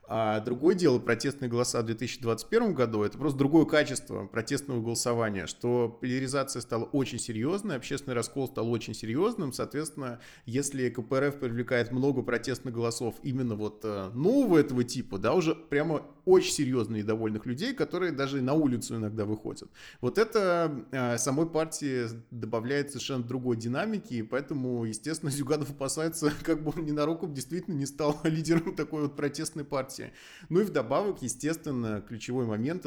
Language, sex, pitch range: Russian, male, 120-150 Hz